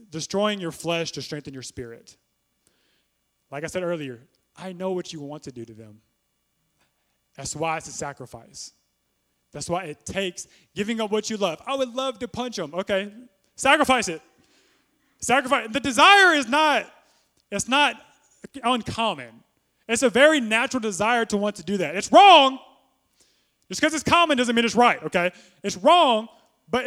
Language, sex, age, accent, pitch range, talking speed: English, male, 20-39, American, 160-240 Hz, 170 wpm